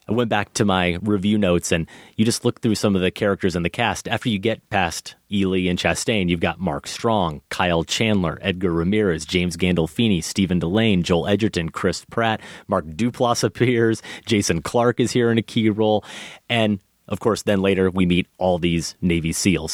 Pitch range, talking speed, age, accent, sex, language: 90-105 Hz, 195 wpm, 30-49, American, male, English